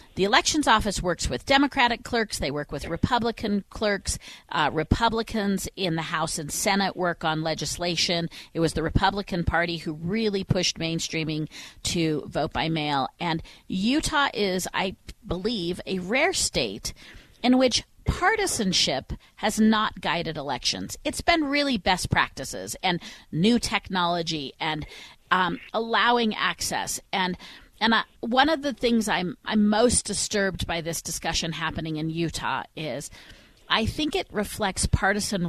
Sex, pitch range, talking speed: female, 160-215 Hz, 145 wpm